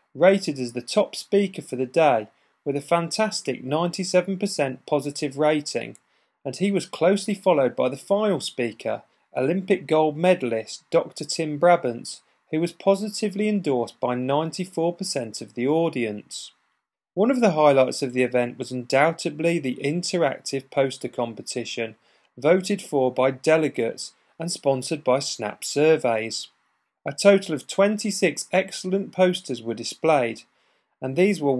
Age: 40-59